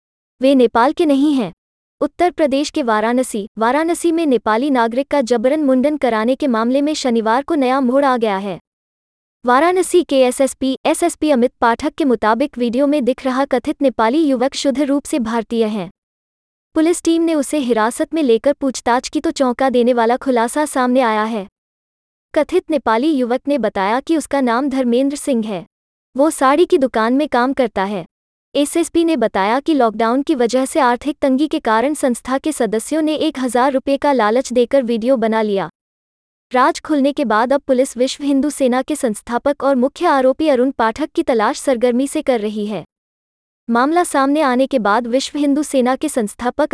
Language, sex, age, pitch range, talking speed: Hindi, female, 20-39, 235-290 Hz, 180 wpm